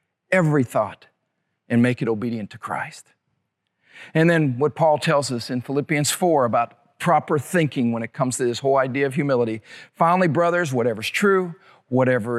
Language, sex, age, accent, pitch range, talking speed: English, male, 50-69, American, 130-165 Hz, 165 wpm